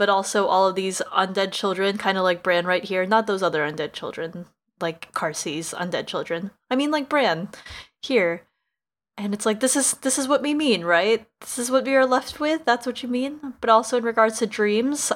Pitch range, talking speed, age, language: 190-250 Hz, 215 wpm, 20-39, English